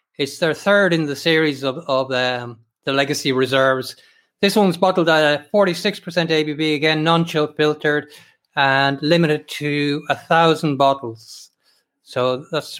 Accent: Irish